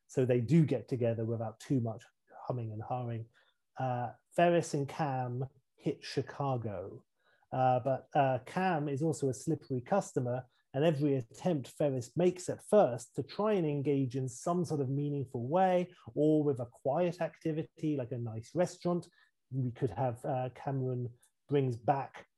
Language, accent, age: English, British, 30-49